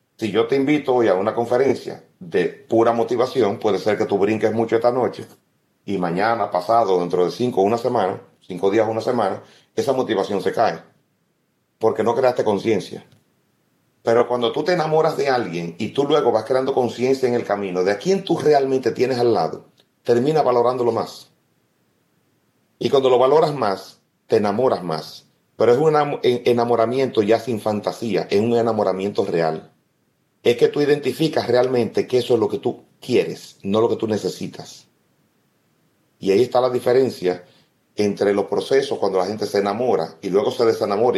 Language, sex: Spanish, male